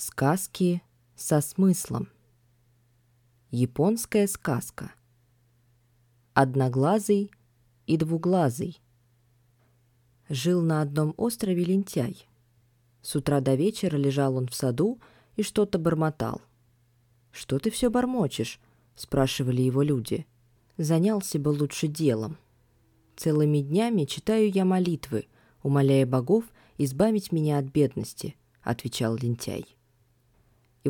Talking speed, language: 95 wpm, Russian